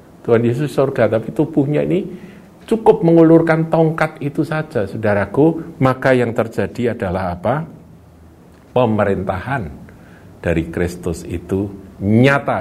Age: 50-69